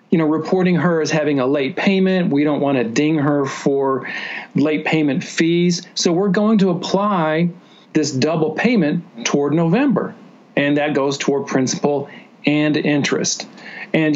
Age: 40-59